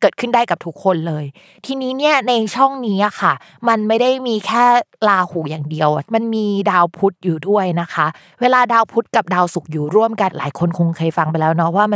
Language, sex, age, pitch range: Thai, female, 20-39, 165-225 Hz